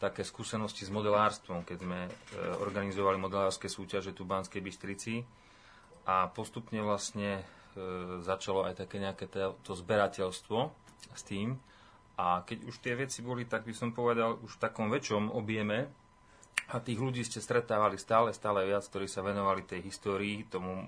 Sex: male